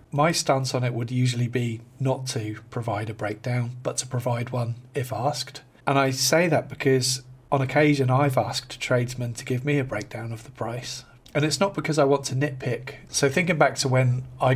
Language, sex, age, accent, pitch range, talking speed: English, male, 40-59, British, 125-140 Hz, 205 wpm